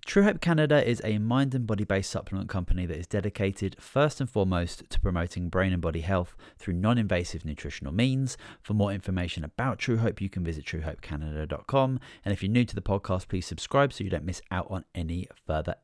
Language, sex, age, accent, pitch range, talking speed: English, male, 30-49, British, 90-125 Hz, 205 wpm